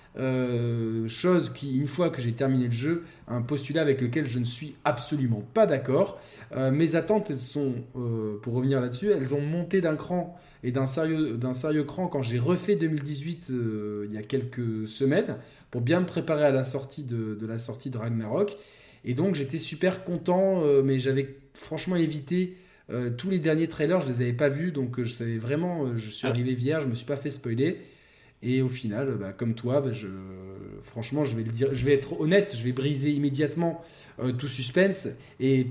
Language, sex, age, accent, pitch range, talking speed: French, male, 20-39, French, 125-160 Hz, 205 wpm